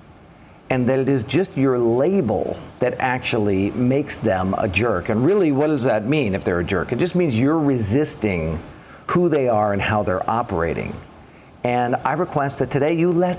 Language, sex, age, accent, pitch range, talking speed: English, male, 50-69, American, 120-160 Hz, 190 wpm